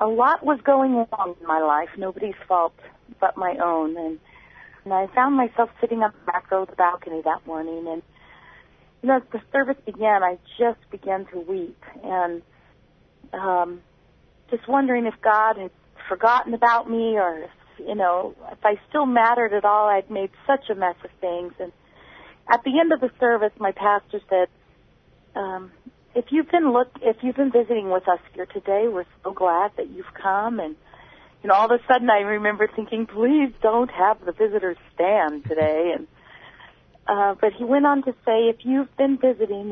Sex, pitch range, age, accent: female, 185-235 Hz, 40-59, American